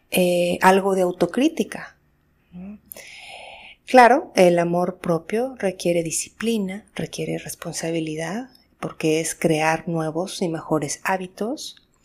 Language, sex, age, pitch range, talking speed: Spanish, female, 40-59, 165-235 Hz, 95 wpm